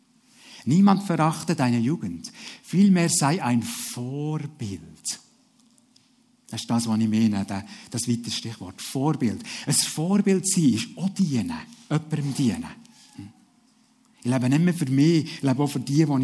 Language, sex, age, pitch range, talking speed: German, male, 60-79, 135-190 Hz, 140 wpm